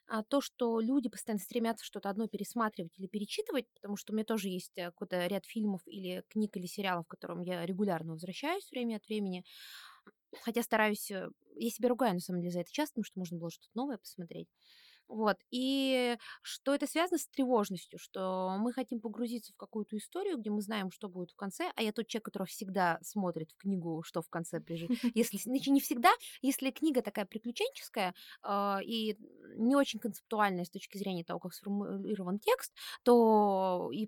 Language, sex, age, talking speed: Russian, female, 20-39, 185 wpm